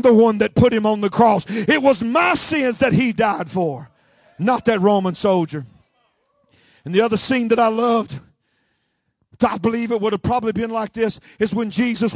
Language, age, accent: English, 50-69, American